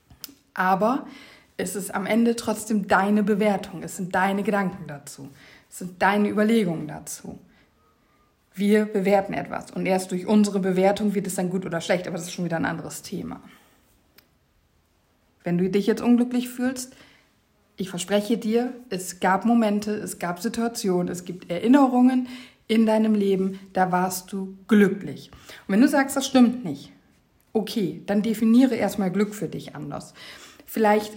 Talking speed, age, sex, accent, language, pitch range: 155 wpm, 50-69, female, German, German, 190-225 Hz